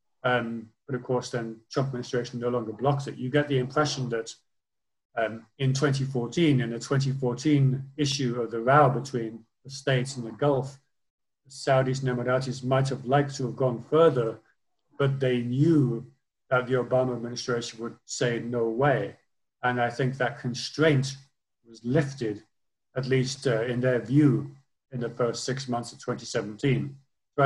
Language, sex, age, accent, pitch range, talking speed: English, male, 40-59, British, 120-140 Hz, 160 wpm